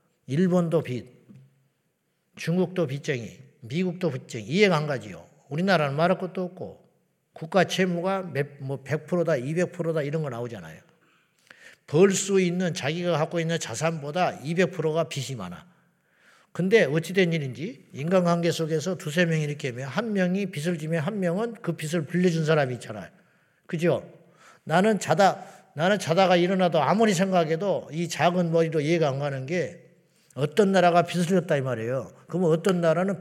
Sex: male